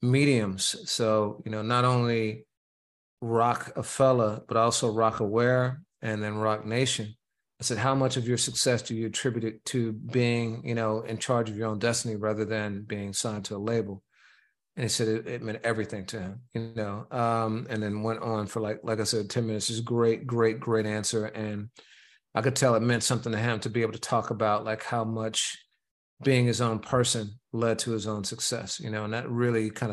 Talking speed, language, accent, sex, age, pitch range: 215 wpm, English, American, male, 40-59, 110-125 Hz